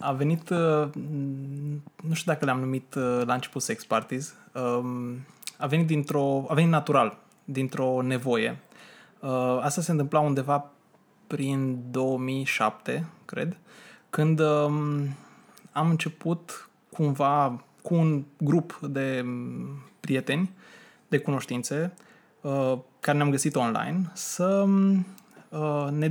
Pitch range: 135-180 Hz